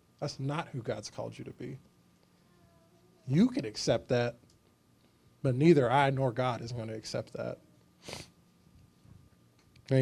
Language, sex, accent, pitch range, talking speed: English, male, American, 125-150 Hz, 140 wpm